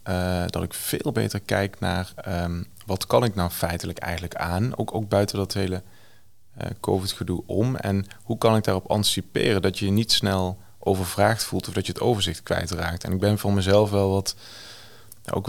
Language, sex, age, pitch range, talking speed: Dutch, male, 20-39, 90-105 Hz, 180 wpm